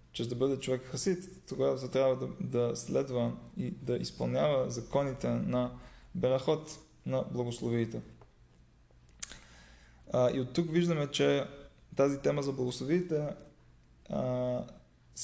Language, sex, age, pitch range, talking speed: Bulgarian, male, 20-39, 115-140 Hz, 120 wpm